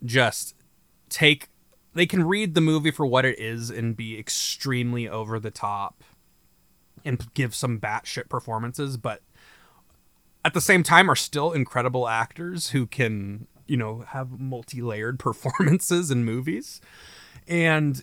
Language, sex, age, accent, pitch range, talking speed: English, male, 20-39, American, 110-155 Hz, 135 wpm